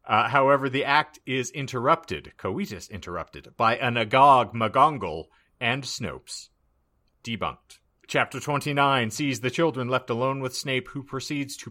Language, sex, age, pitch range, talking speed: English, male, 40-59, 110-140 Hz, 140 wpm